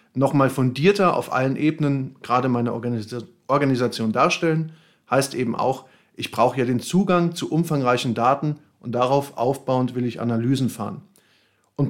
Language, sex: German, male